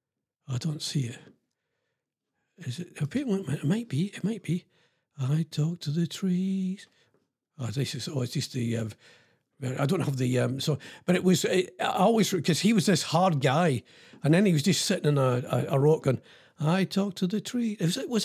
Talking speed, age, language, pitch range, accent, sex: 205 wpm, 50-69, English, 130-180 Hz, British, male